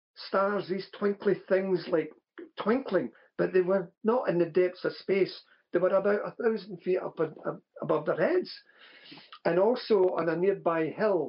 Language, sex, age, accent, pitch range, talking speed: English, male, 50-69, British, 170-200 Hz, 165 wpm